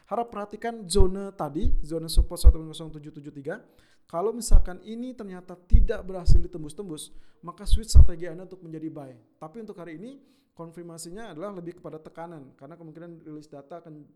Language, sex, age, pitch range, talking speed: Indonesian, male, 20-39, 155-185 Hz, 155 wpm